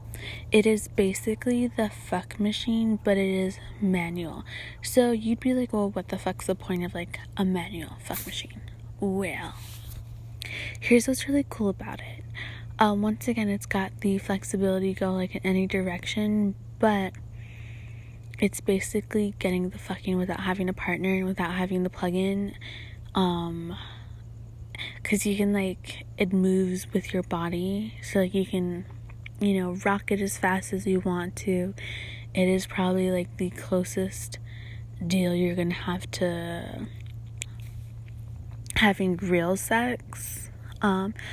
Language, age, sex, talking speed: English, 20-39, female, 145 wpm